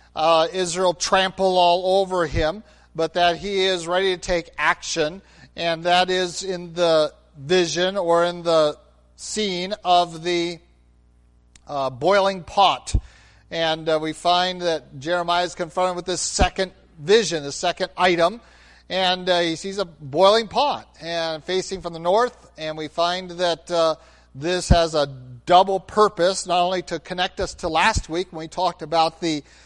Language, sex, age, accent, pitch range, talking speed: English, male, 50-69, American, 160-190 Hz, 160 wpm